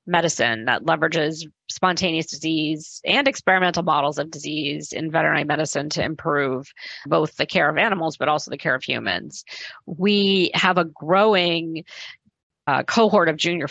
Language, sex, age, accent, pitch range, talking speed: English, female, 40-59, American, 150-170 Hz, 150 wpm